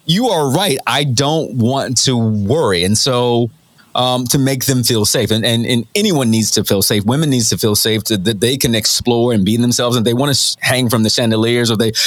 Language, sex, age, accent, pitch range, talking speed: English, male, 30-49, American, 110-135 Hz, 235 wpm